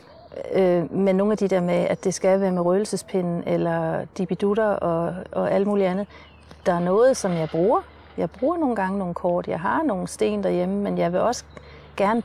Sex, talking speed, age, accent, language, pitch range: female, 200 wpm, 30-49, native, Danish, 175-215 Hz